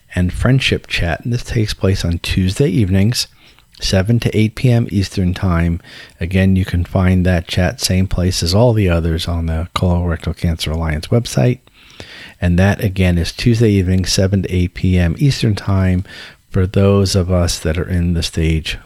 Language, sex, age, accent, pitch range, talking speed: English, male, 40-59, American, 85-105 Hz, 175 wpm